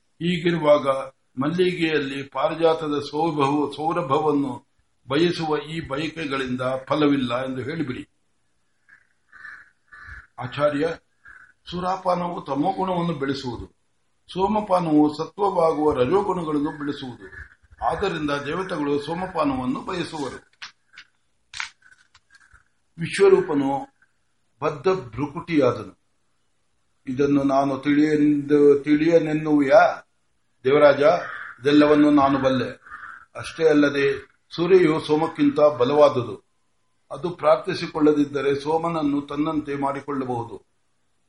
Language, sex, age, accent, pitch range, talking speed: Kannada, male, 60-79, native, 135-165 Hz, 60 wpm